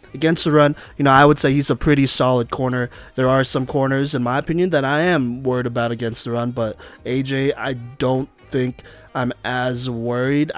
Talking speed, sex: 205 wpm, male